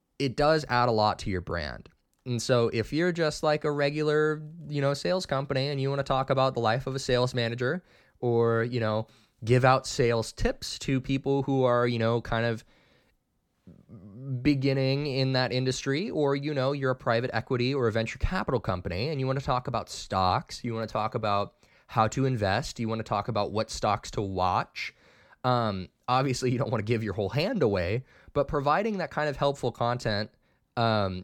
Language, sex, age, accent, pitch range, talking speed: English, male, 20-39, American, 105-135 Hz, 205 wpm